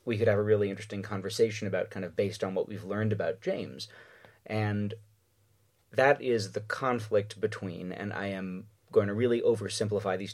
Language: English